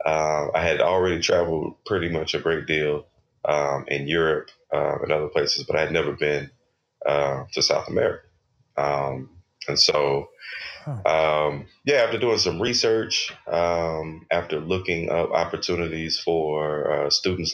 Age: 30-49